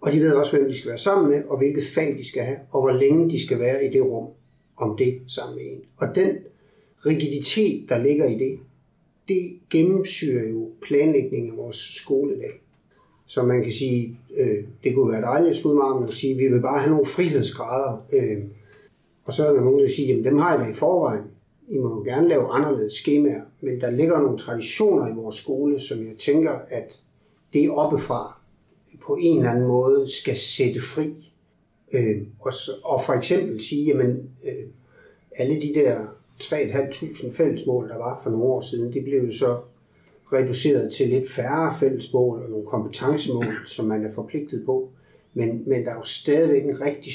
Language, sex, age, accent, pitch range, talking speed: Danish, male, 60-79, native, 125-150 Hz, 195 wpm